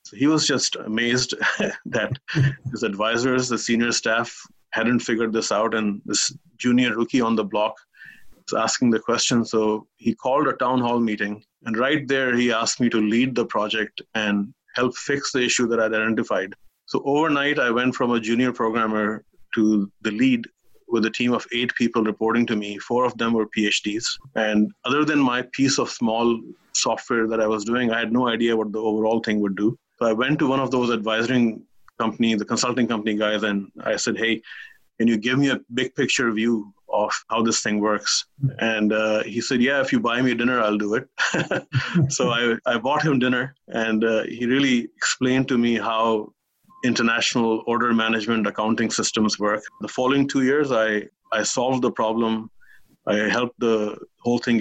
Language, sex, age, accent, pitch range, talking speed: English, male, 30-49, Indian, 110-125 Hz, 190 wpm